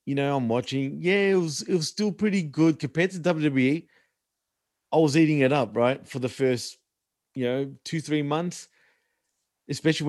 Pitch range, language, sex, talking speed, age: 130-170 Hz, English, male, 170 wpm, 30-49